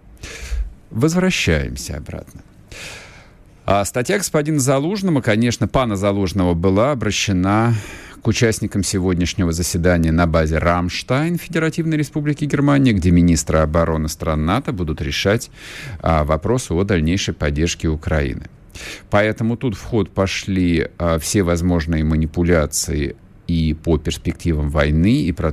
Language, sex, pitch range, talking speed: Russian, male, 80-100 Hz, 110 wpm